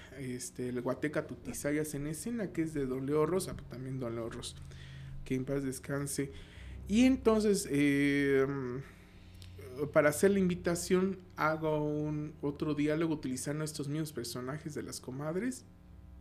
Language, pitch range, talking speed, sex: Spanish, 130-170 Hz, 125 wpm, male